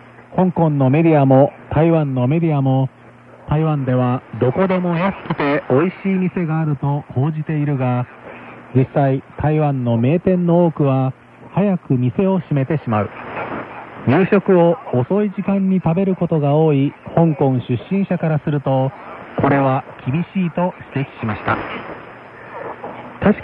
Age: 40-59